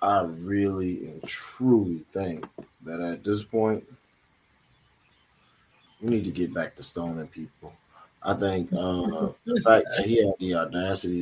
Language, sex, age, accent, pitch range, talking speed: English, male, 20-39, American, 90-110 Hz, 145 wpm